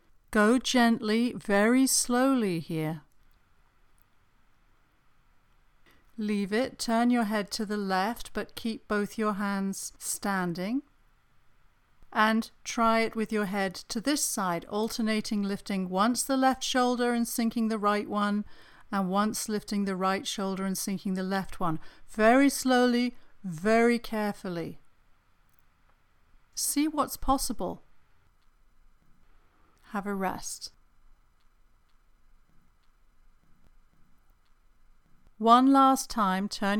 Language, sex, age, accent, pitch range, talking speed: English, female, 50-69, British, 195-230 Hz, 105 wpm